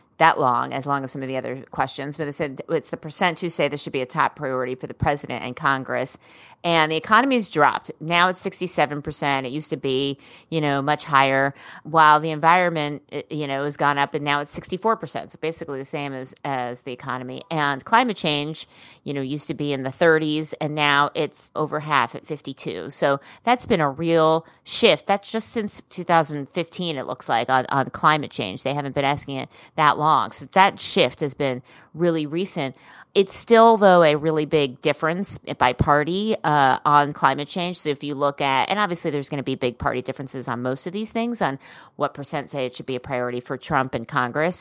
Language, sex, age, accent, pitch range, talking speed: English, female, 30-49, American, 135-165 Hz, 210 wpm